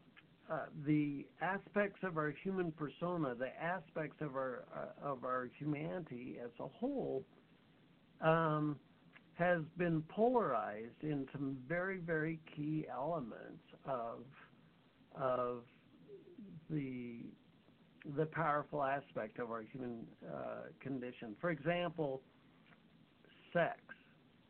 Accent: American